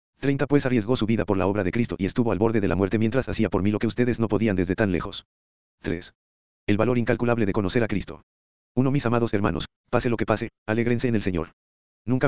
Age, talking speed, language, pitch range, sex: 40-59, 245 wpm, Spanish, 95-120 Hz, male